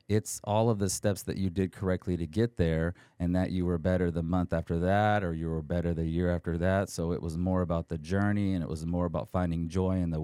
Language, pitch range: English, 90-105 Hz